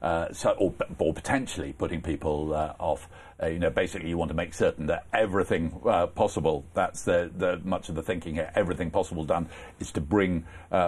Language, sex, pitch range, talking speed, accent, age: English, male, 85-110 Hz, 205 wpm, British, 50-69